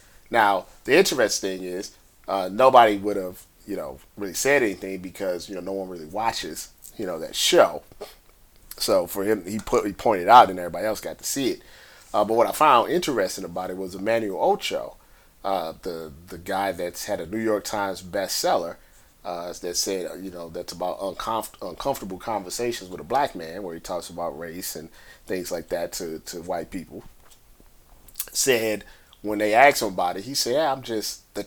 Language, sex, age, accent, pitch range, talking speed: English, male, 30-49, American, 90-105 Hz, 190 wpm